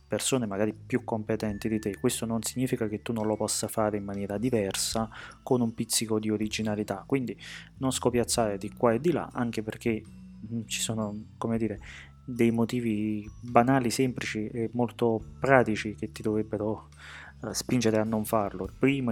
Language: Italian